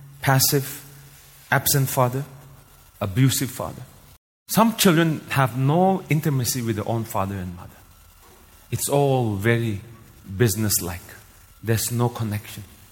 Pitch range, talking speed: 105-150 Hz, 105 wpm